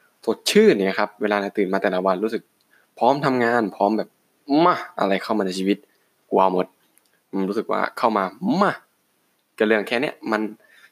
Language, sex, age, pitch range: Thai, male, 20-39, 95-110 Hz